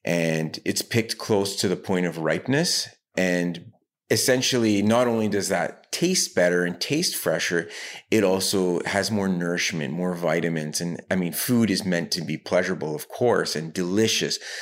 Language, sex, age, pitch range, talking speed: English, male, 30-49, 90-105 Hz, 165 wpm